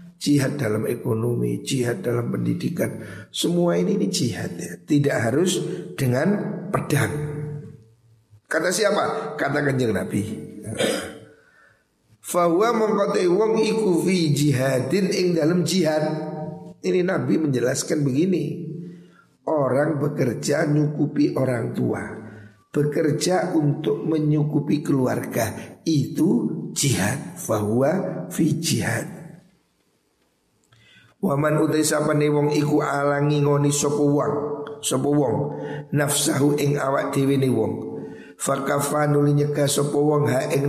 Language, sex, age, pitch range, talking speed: Indonesian, male, 50-69, 130-160 Hz, 100 wpm